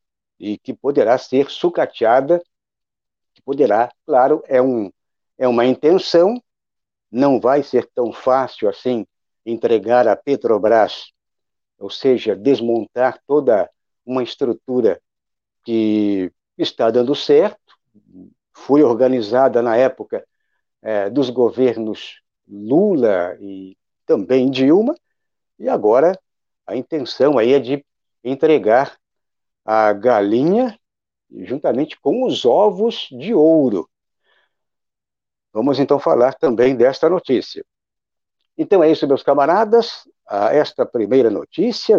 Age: 60-79